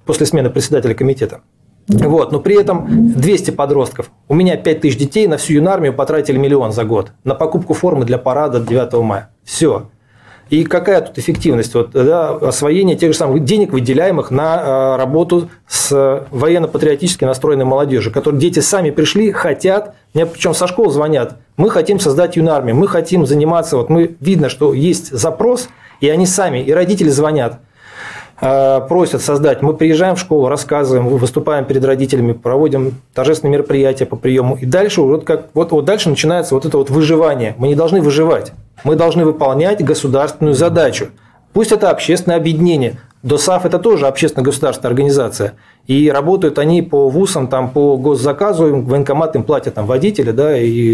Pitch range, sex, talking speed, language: 130-165 Hz, male, 155 wpm, Russian